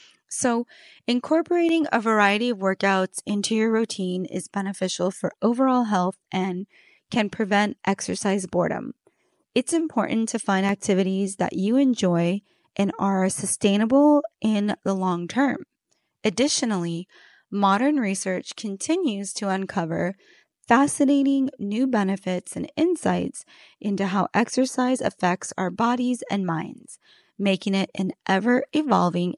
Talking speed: 115 wpm